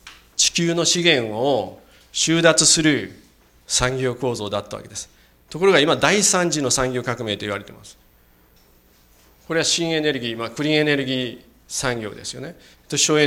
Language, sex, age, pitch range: Japanese, male, 40-59, 105-155 Hz